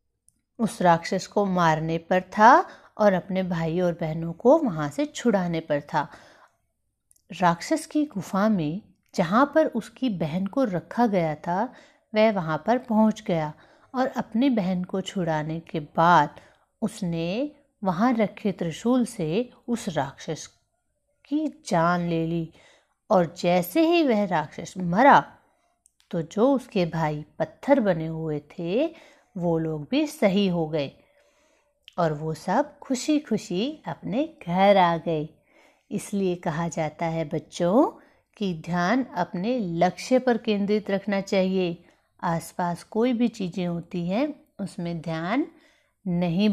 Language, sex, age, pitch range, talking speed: Hindi, female, 50-69, 165-235 Hz, 135 wpm